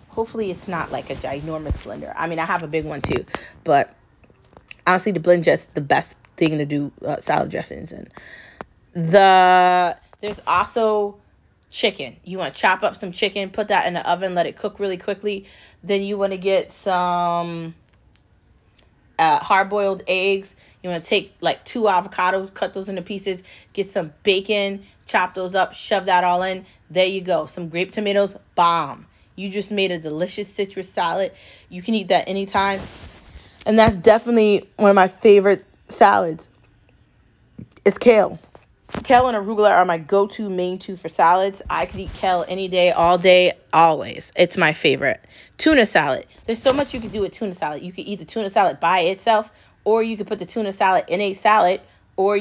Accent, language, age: American, English, 20-39